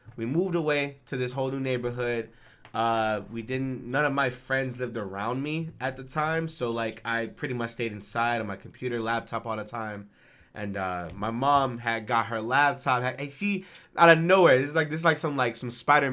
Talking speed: 215 wpm